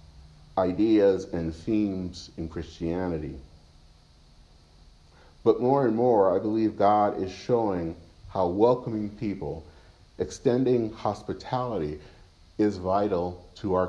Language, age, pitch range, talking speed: English, 50-69, 80-110 Hz, 100 wpm